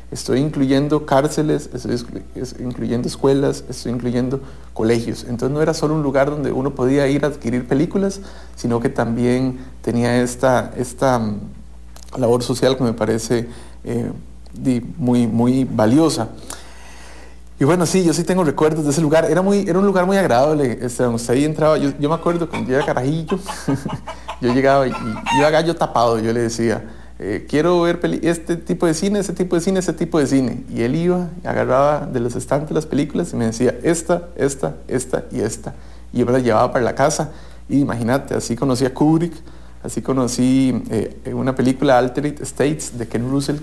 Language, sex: English, male